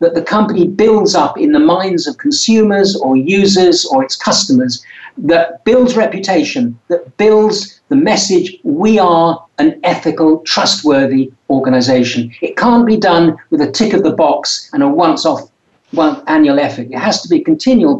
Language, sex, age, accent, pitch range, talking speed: English, male, 50-69, British, 175-265 Hz, 165 wpm